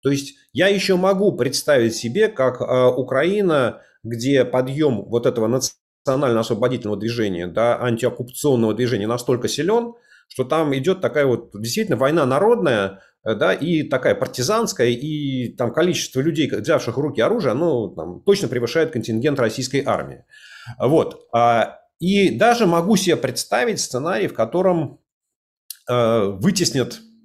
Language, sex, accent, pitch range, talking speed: Russian, male, native, 120-170 Hz, 130 wpm